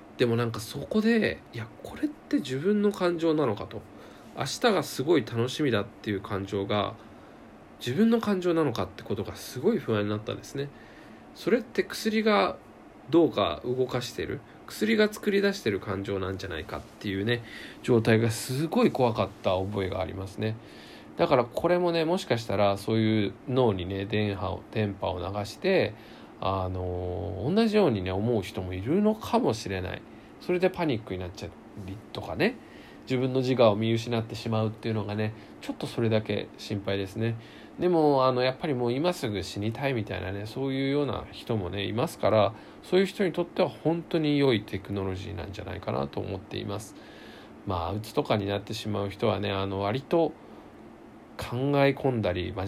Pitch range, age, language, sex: 100-140 Hz, 20-39, Japanese, male